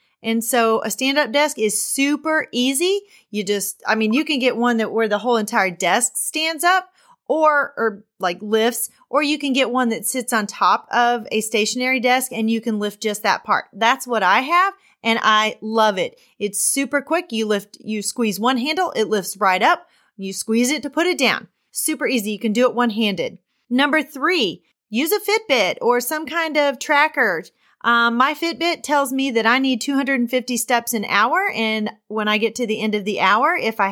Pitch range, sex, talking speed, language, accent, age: 215-285 Hz, female, 205 wpm, English, American, 30-49